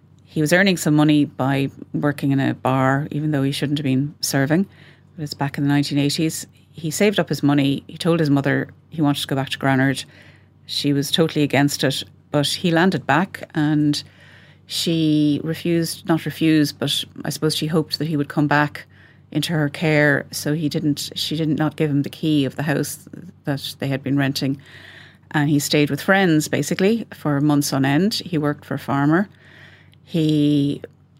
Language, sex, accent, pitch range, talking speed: English, female, Irish, 140-155 Hz, 190 wpm